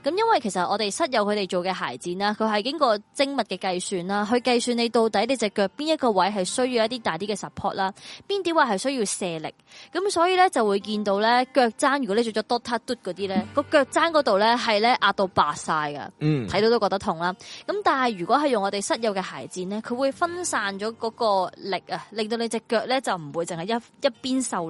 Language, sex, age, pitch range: Chinese, female, 20-39, 185-250 Hz